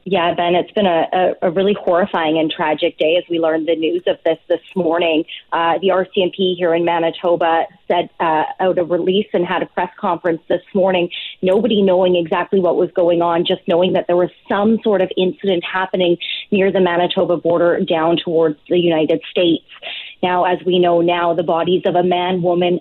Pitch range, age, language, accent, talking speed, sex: 170-195 Hz, 30-49, English, American, 195 wpm, female